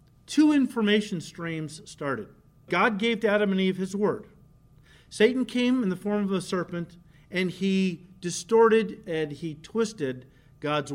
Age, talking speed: 50-69, 150 wpm